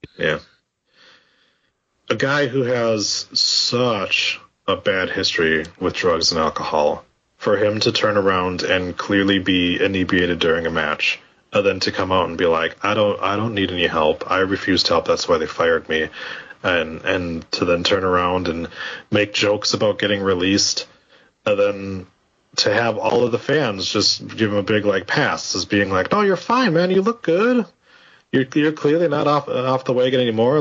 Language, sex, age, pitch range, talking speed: English, male, 30-49, 100-135 Hz, 185 wpm